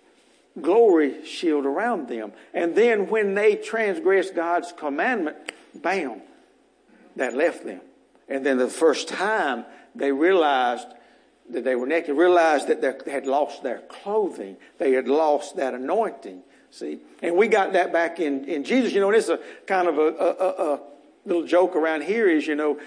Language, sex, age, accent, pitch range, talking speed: English, male, 60-79, American, 150-225 Hz, 175 wpm